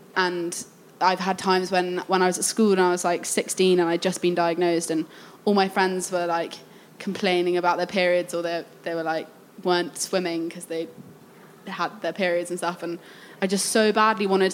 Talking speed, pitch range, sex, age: 205 wpm, 175-195 Hz, female, 20-39